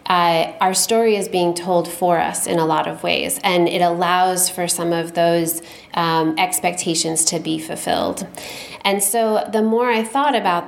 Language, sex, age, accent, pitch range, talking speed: English, female, 20-39, American, 170-205 Hz, 180 wpm